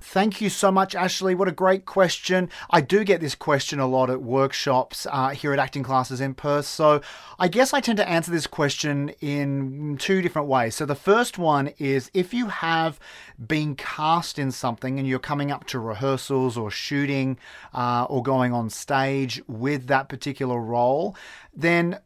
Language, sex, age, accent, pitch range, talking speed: English, male, 30-49, Australian, 125-155 Hz, 185 wpm